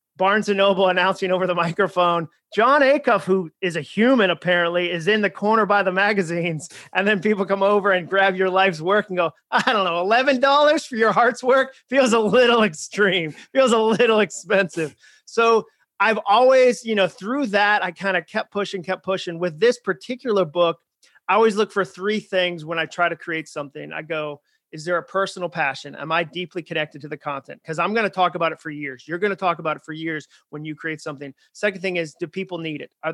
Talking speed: 220 wpm